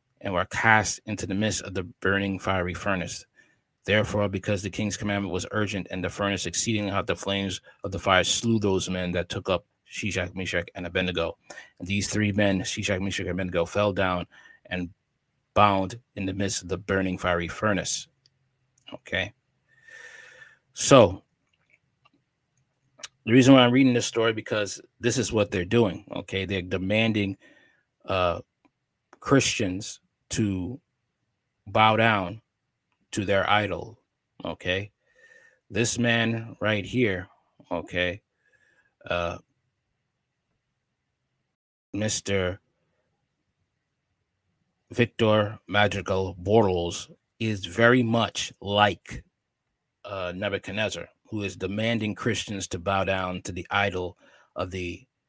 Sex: male